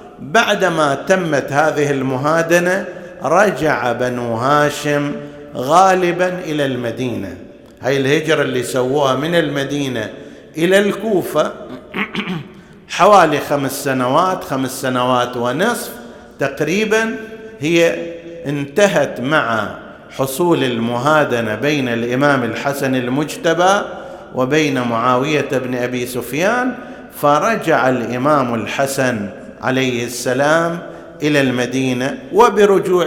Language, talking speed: Arabic, 85 wpm